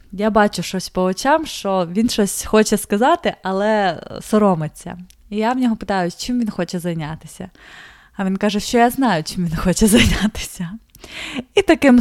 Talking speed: 165 wpm